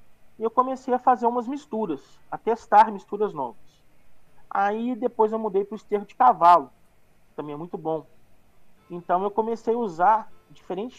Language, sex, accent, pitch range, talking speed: Portuguese, male, Brazilian, 155-205 Hz, 170 wpm